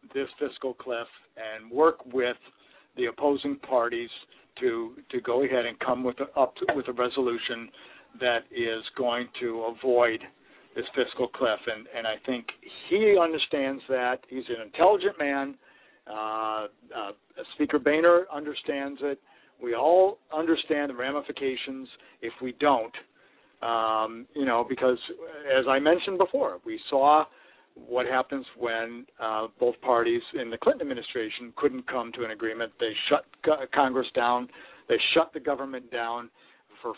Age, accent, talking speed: 50-69, American, 145 wpm